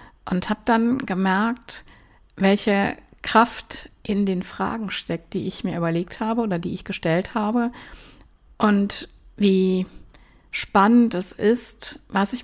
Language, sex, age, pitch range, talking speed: German, female, 60-79, 185-230 Hz, 130 wpm